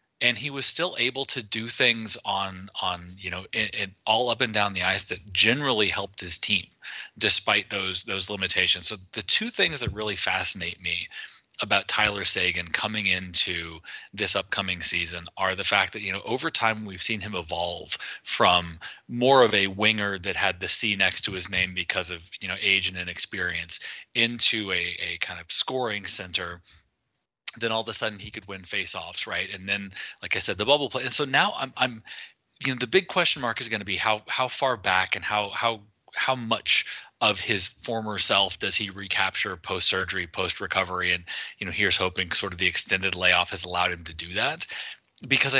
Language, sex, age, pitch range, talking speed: English, male, 30-49, 90-115 Hz, 200 wpm